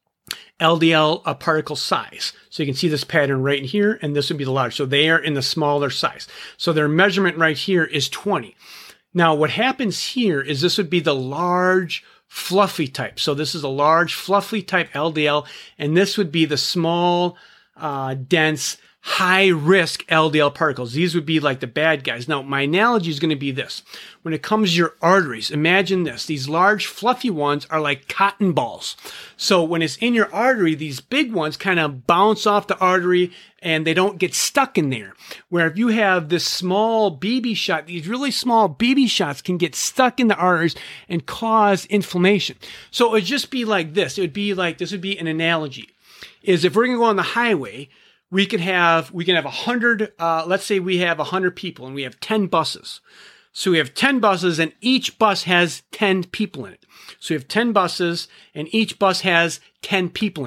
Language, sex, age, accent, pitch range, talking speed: English, male, 40-59, American, 160-205 Hz, 205 wpm